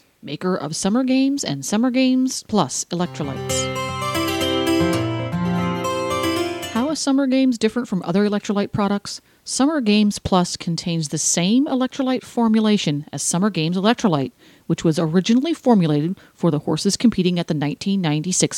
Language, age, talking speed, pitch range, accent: English, 40-59, 130 wpm, 165-220 Hz, American